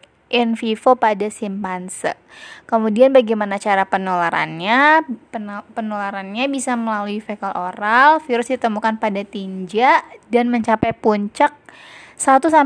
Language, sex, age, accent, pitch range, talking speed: Indonesian, female, 20-39, native, 200-240 Hz, 100 wpm